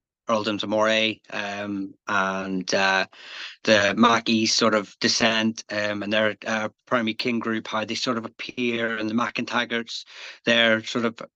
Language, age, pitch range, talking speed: English, 30-49, 105-115 Hz, 155 wpm